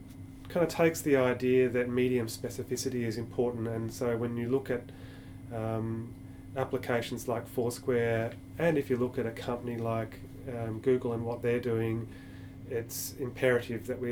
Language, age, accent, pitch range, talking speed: English, 30-49, Australian, 115-125 Hz, 160 wpm